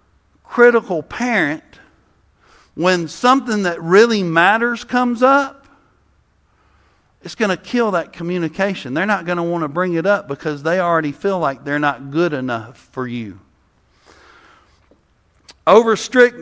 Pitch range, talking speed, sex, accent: 170-230 Hz, 130 wpm, male, American